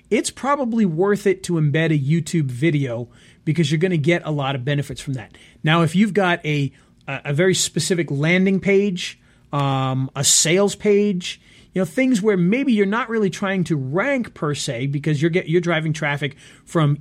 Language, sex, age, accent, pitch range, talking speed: English, male, 40-59, American, 145-175 Hz, 185 wpm